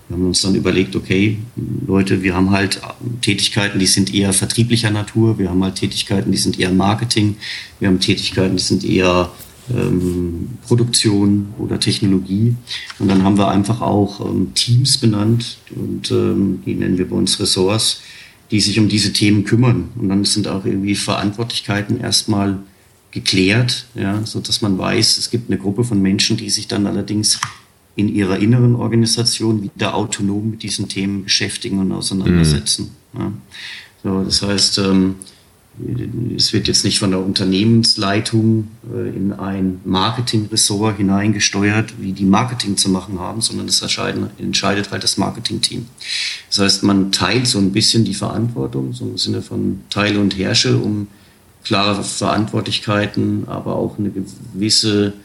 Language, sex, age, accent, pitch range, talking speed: German, male, 40-59, German, 95-110 Hz, 150 wpm